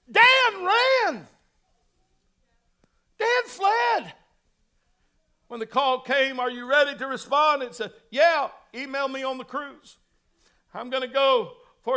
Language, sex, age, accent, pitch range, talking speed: English, male, 60-79, American, 270-320 Hz, 130 wpm